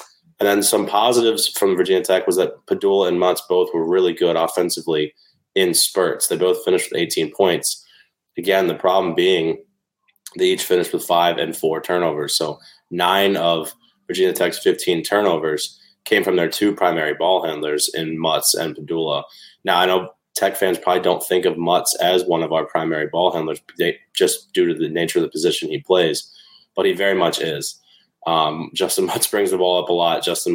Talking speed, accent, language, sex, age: 190 wpm, American, English, male, 20-39